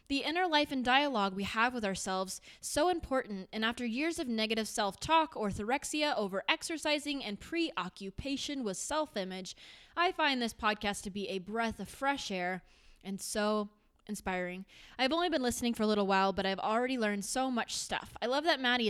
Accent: American